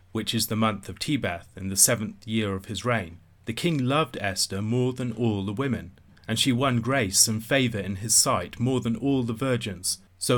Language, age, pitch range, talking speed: English, 30-49, 95-120 Hz, 215 wpm